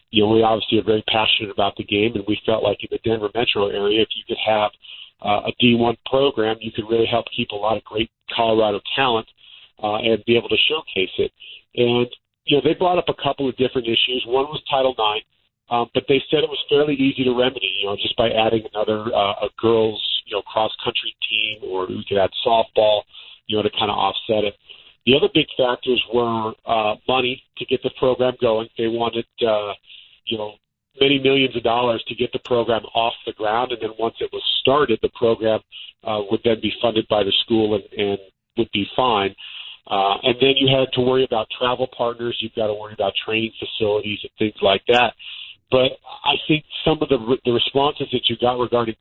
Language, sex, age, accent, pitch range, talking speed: English, male, 40-59, American, 105-130 Hz, 220 wpm